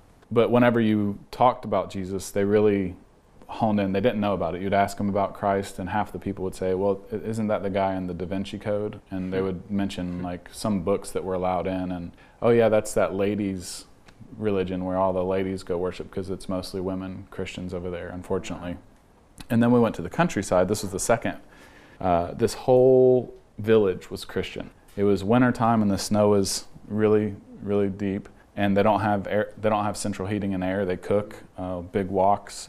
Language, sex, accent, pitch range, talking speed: English, male, American, 95-105 Hz, 205 wpm